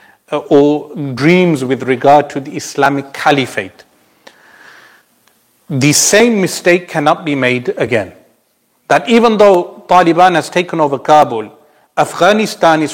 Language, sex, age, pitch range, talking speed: English, male, 40-59, 140-165 Hz, 115 wpm